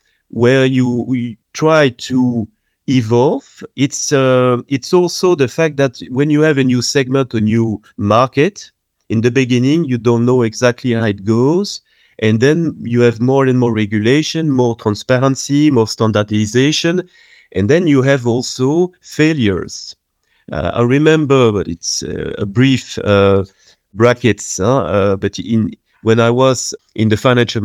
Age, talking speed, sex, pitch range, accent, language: 40-59, 150 wpm, male, 105-135 Hz, French, English